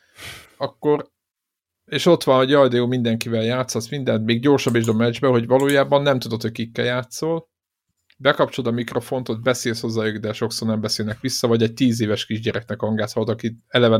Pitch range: 110-130 Hz